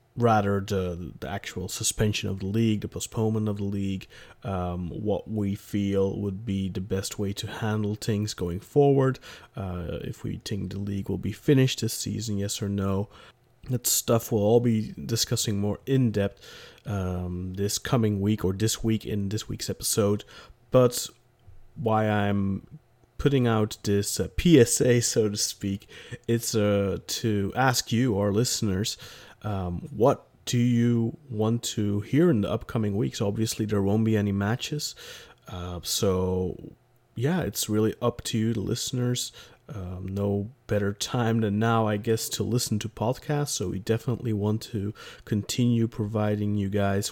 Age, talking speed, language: 30-49, 160 wpm, English